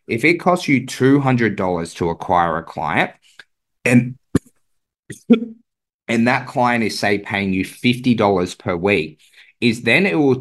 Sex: male